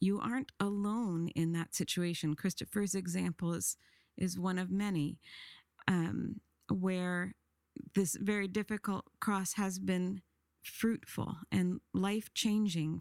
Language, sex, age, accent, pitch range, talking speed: English, female, 40-59, American, 175-215 Hz, 110 wpm